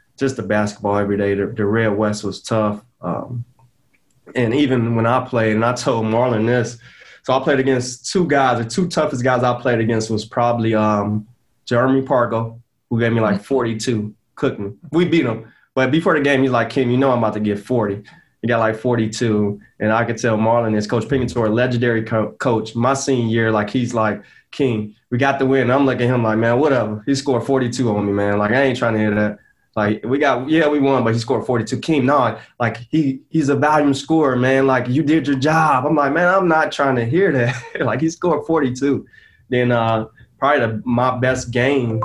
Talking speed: 215 wpm